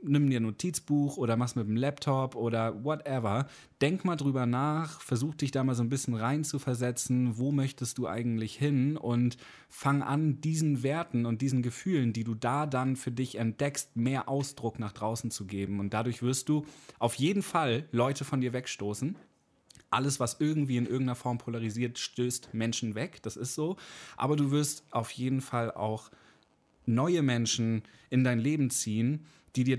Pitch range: 115-135 Hz